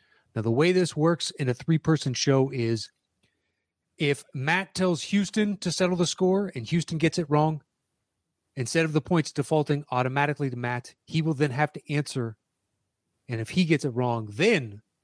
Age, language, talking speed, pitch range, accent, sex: 30-49, English, 175 wpm, 115-145 Hz, American, male